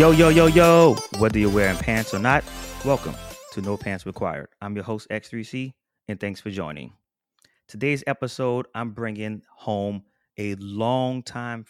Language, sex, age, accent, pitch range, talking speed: English, male, 30-49, American, 95-120 Hz, 155 wpm